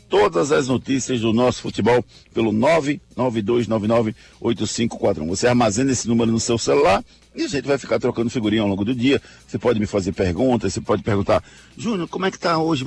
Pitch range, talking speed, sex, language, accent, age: 115-155 Hz, 185 wpm, male, Portuguese, Brazilian, 60-79